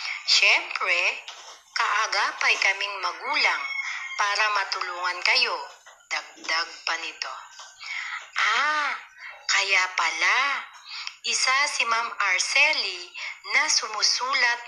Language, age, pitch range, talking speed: Filipino, 40-59, 205-315 Hz, 80 wpm